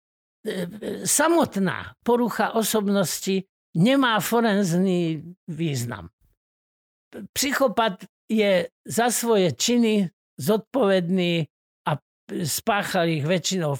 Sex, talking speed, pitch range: male, 70 wpm, 165-220 Hz